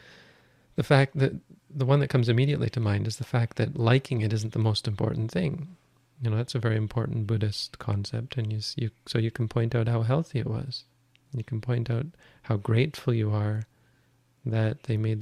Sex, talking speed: male, 205 wpm